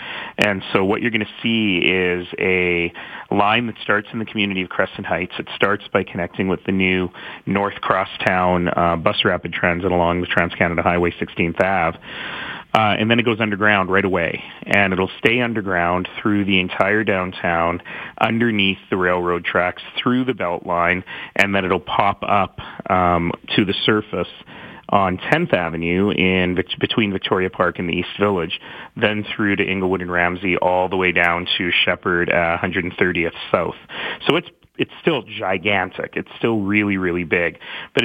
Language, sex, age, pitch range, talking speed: English, male, 30-49, 90-105 Hz, 165 wpm